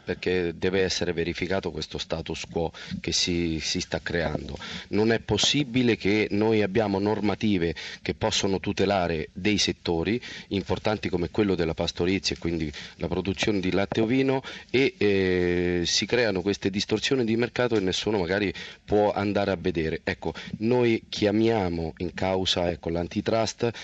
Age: 40-59